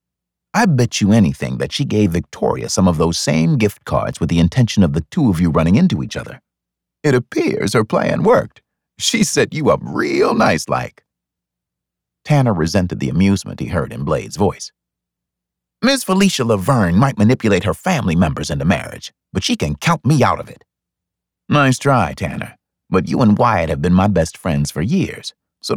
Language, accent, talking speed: English, American, 185 wpm